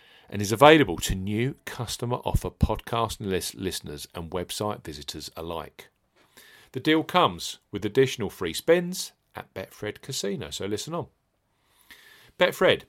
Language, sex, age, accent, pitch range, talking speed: English, male, 50-69, British, 95-145 Hz, 125 wpm